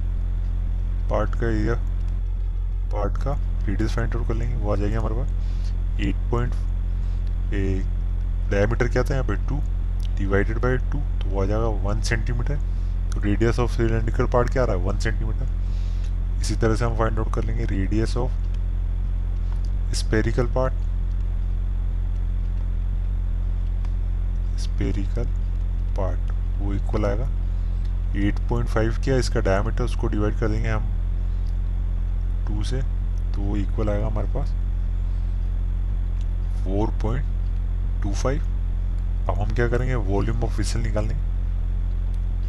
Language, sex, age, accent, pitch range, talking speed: Hindi, male, 20-39, native, 90-105 Hz, 115 wpm